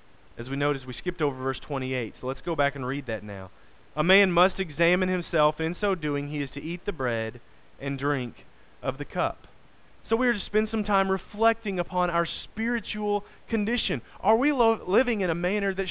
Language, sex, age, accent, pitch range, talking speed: English, male, 30-49, American, 130-195 Hz, 210 wpm